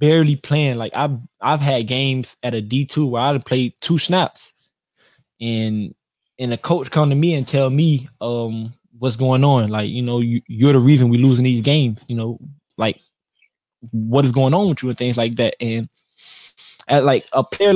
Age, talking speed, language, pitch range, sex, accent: 20-39, 200 wpm, English, 115-145 Hz, male, American